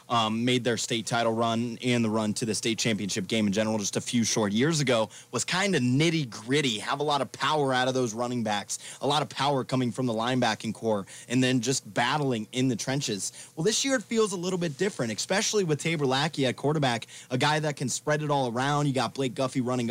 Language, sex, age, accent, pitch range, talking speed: English, male, 20-39, American, 120-155 Hz, 240 wpm